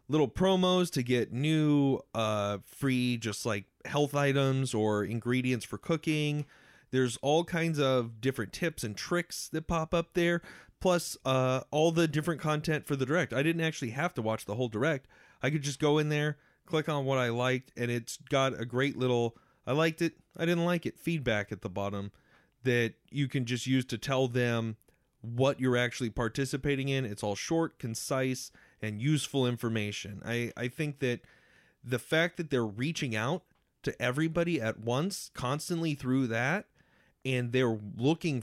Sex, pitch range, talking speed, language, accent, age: male, 115-150 Hz, 175 wpm, English, American, 30-49